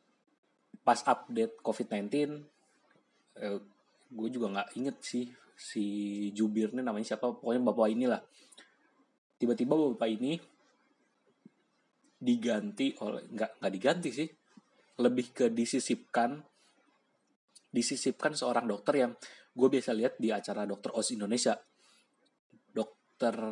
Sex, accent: male, native